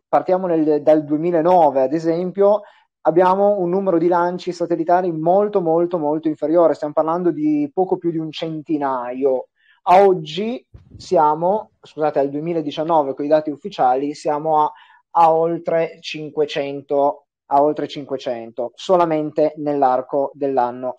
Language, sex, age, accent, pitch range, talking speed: Italian, male, 30-49, native, 145-180 Hz, 120 wpm